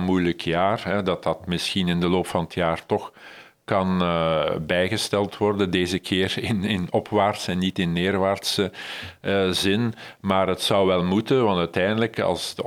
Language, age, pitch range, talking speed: Dutch, 50-69, 90-100 Hz, 175 wpm